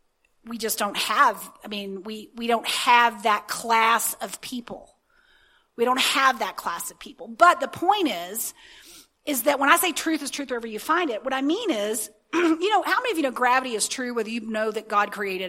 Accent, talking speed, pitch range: American, 220 wpm, 225-290 Hz